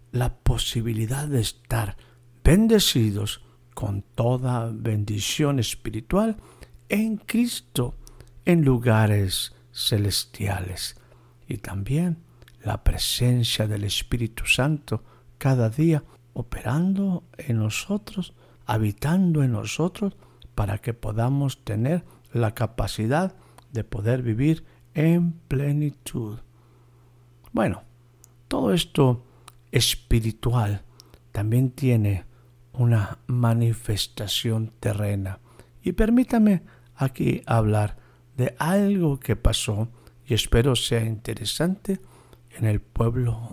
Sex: male